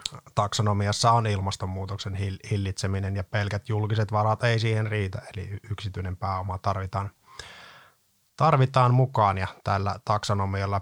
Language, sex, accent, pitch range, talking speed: Finnish, male, native, 100-115 Hz, 110 wpm